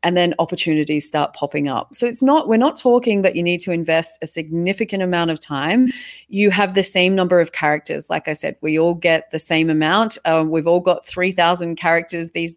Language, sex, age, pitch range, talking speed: English, female, 30-49, 160-195 Hz, 215 wpm